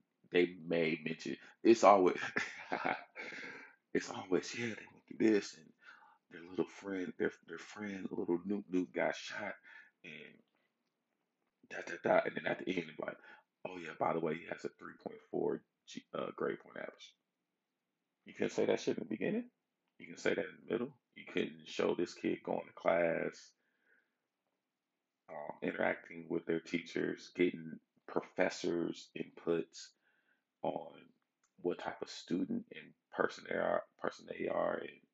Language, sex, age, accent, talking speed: English, male, 30-49, American, 155 wpm